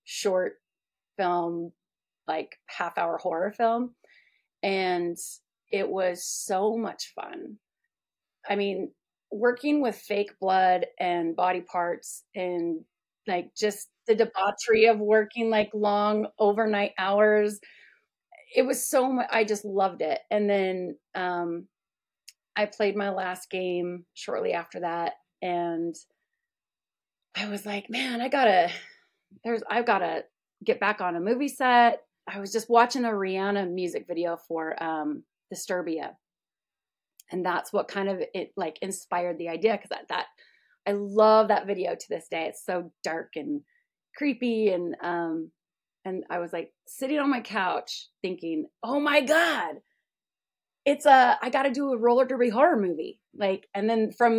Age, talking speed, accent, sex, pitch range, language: 30-49, 150 wpm, American, female, 180-235 Hz, English